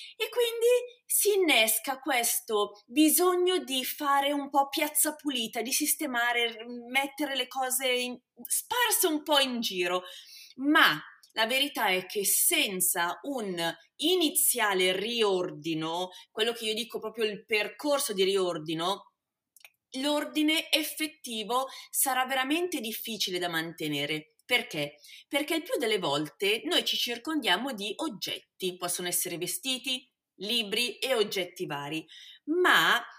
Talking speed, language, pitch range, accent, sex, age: 120 wpm, Italian, 190-300 Hz, native, female, 30-49